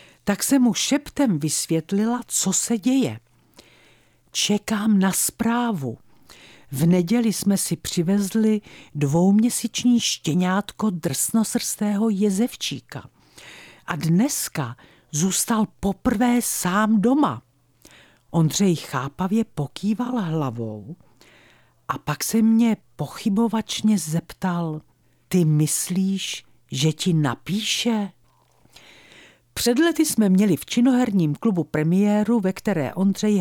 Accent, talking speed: native, 95 wpm